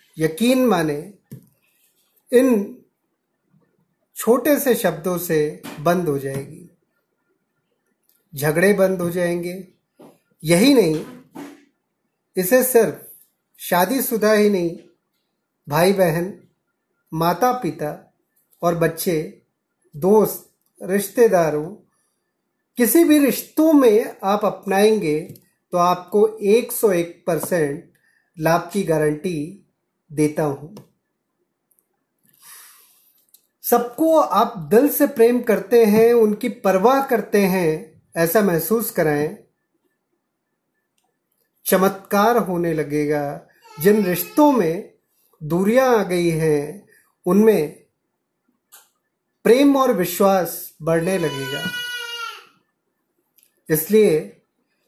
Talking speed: 85 wpm